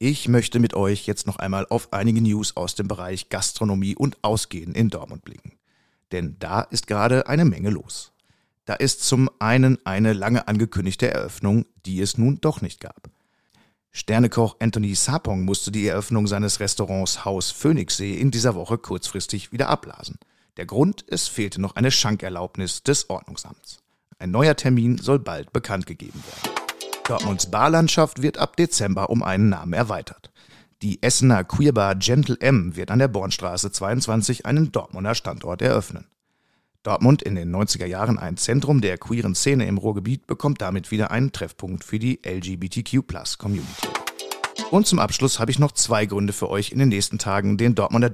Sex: male